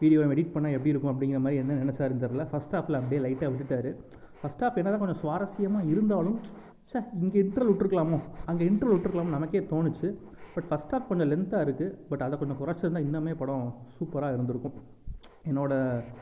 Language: Tamil